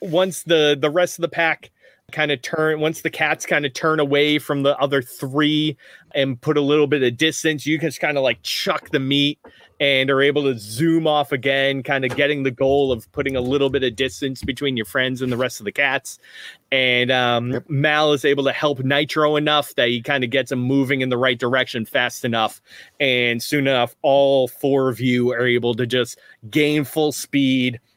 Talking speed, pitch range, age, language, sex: 215 wpm, 120-145 Hz, 30-49, English, male